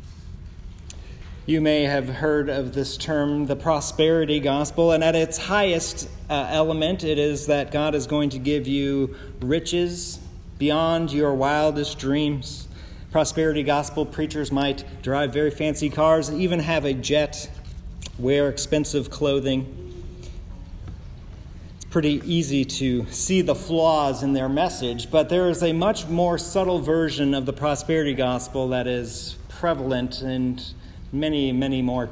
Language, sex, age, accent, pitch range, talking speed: English, male, 40-59, American, 95-160 Hz, 140 wpm